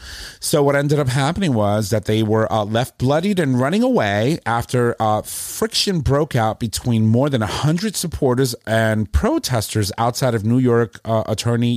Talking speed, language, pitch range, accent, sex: 170 wpm, English, 105-125 Hz, American, male